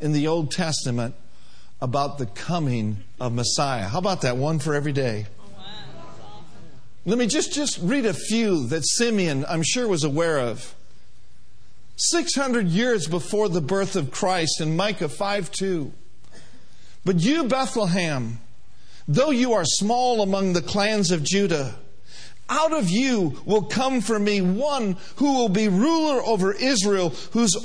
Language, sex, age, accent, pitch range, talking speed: English, male, 50-69, American, 145-215 Hz, 145 wpm